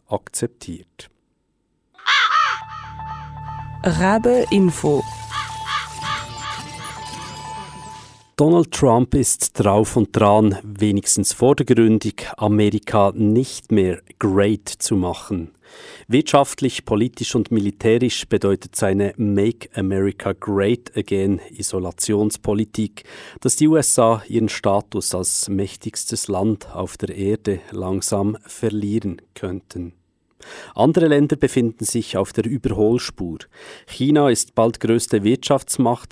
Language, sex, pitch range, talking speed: English, male, 100-125 Hz, 90 wpm